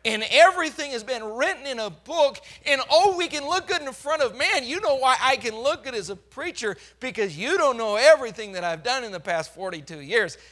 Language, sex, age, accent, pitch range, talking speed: English, male, 40-59, American, 200-275 Hz, 235 wpm